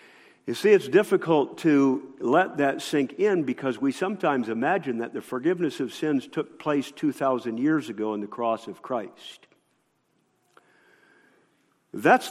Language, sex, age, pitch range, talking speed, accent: English, male, 50-69, 110-175 Hz, 140 wpm, American